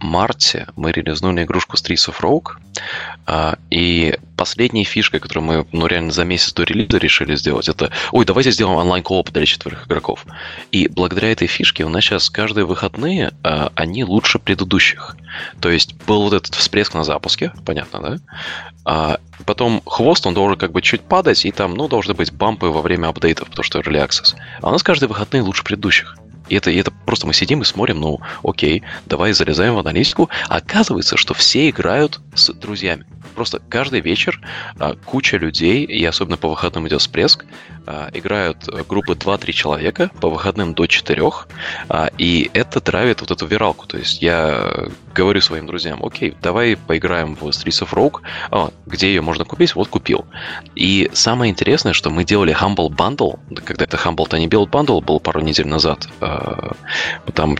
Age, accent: 20-39, native